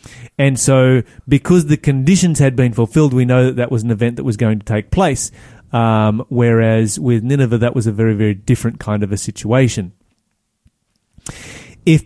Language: English